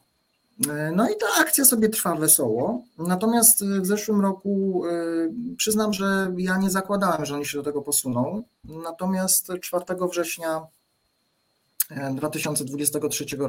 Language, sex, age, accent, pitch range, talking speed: Polish, male, 40-59, native, 130-180 Hz, 115 wpm